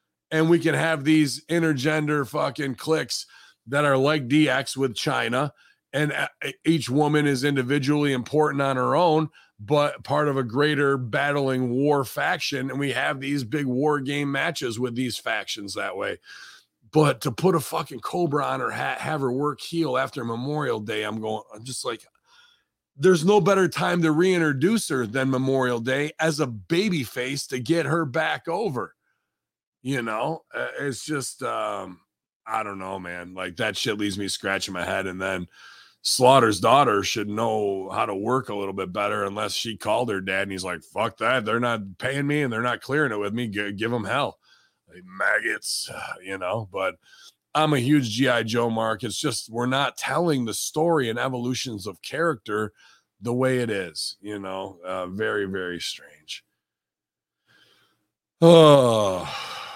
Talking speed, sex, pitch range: 170 wpm, male, 110-150 Hz